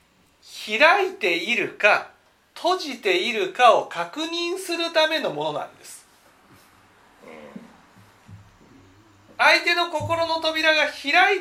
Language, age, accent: Japanese, 40-59, native